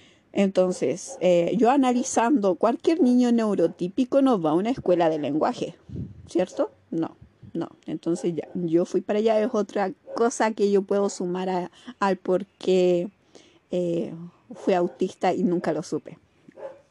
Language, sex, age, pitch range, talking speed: Spanish, female, 40-59, 180-225 Hz, 145 wpm